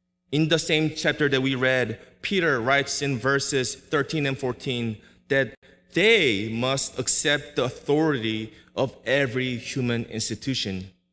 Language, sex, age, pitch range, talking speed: English, male, 20-39, 110-155 Hz, 130 wpm